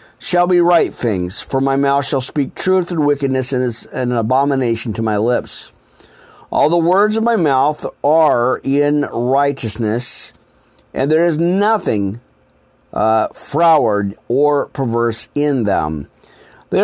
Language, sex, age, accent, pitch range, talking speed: English, male, 50-69, American, 115-165 Hz, 135 wpm